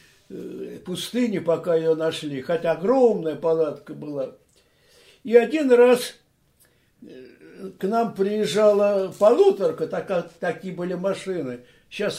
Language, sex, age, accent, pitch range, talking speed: Russian, male, 60-79, native, 165-220 Hz, 100 wpm